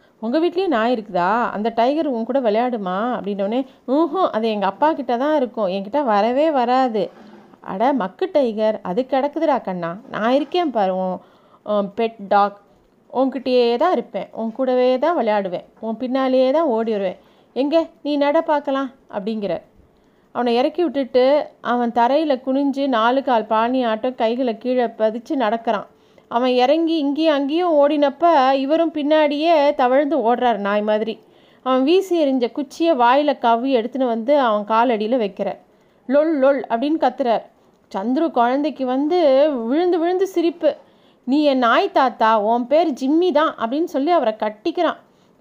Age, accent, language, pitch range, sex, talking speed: 30-49, native, Tamil, 225-300 Hz, female, 135 wpm